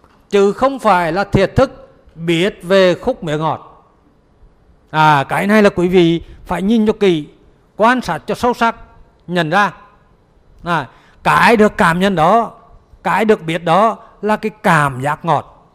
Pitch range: 150-205 Hz